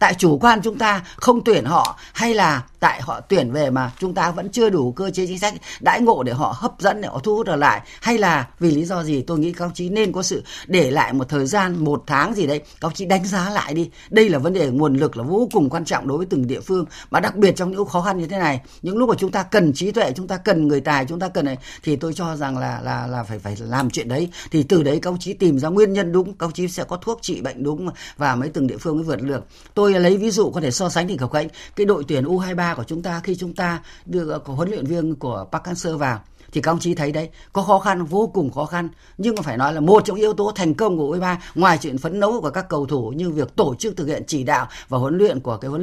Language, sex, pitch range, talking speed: Vietnamese, female, 145-190 Hz, 300 wpm